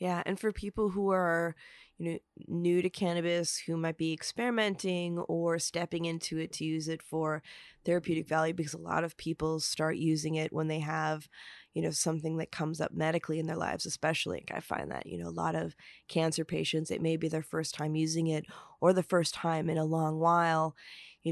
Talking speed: 210 wpm